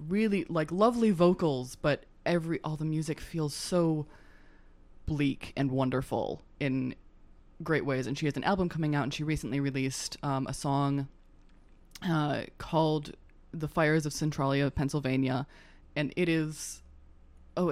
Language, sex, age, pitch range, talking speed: English, female, 20-39, 135-160 Hz, 140 wpm